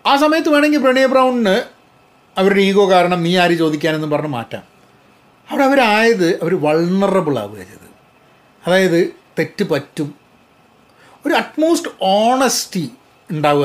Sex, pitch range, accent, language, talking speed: male, 140-185 Hz, native, Malayalam, 110 wpm